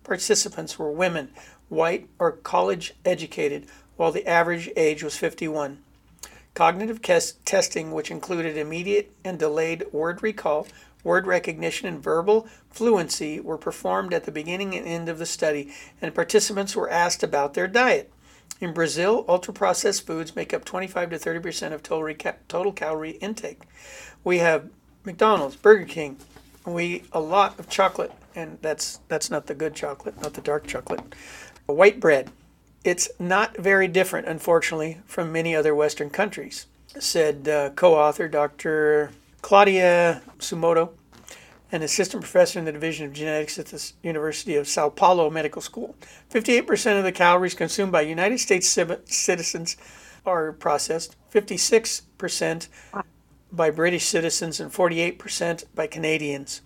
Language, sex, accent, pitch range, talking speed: English, male, American, 155-195 Hz, 140 wpm